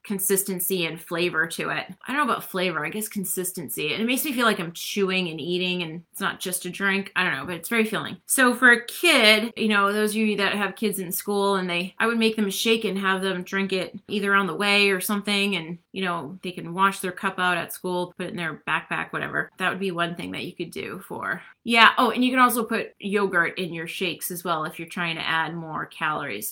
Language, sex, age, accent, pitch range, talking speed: English, female, 20-39, American, 180-215 Hz, 260 wpm